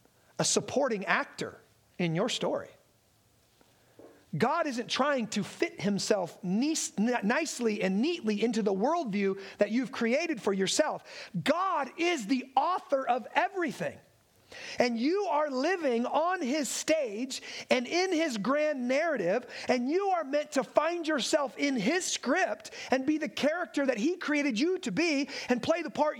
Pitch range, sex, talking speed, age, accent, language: 215-295 Hz, male, 150 wpm, 40-59, American, English